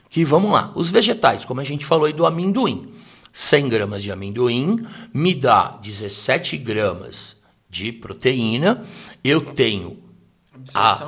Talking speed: 135 wpm